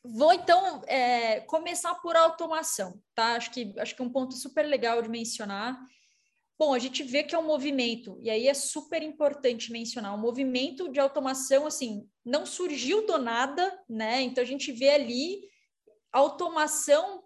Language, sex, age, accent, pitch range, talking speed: Portuguese, female, 20-39, Brazilian, 245-320 Hz, 170 wpm